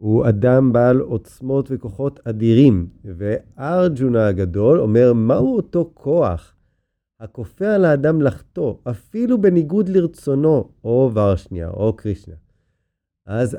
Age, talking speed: 30-49, 105 wpm